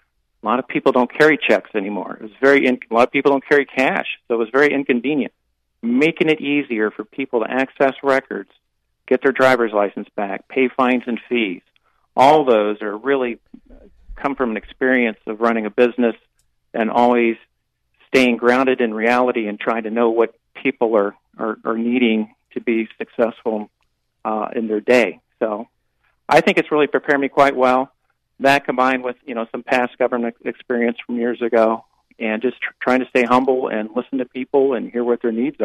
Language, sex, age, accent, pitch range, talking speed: English, male, 50-69, American, 110-135 Hz, 190 wpm